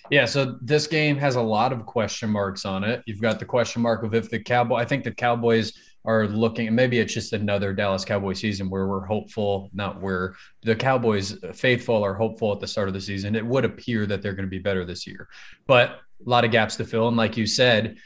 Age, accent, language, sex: 20-39, American, English, male